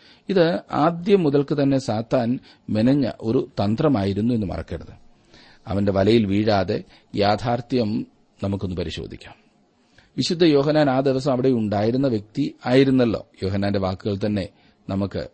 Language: Malayalam